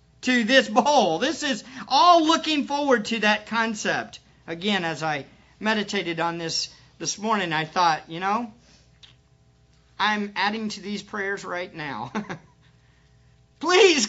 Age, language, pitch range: 50-69, English, 135-215 Hz